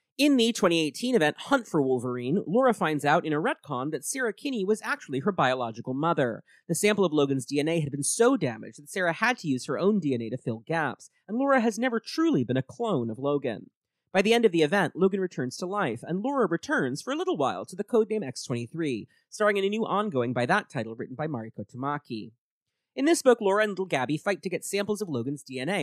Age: 30-49